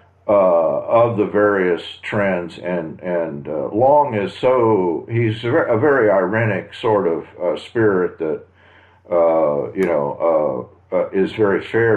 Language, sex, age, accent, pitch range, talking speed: English, male, 50-69, American, 90-125 Hz, 150 wpm